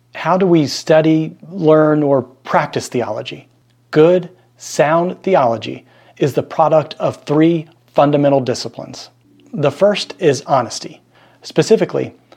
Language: English